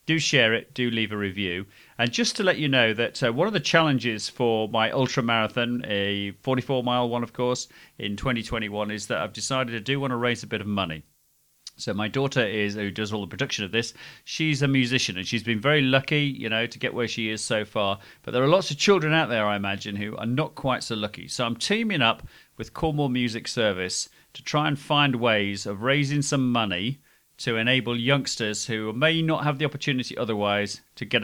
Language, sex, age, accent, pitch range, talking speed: English, male, 40-59, British, 110-135 Hz, 225 wpm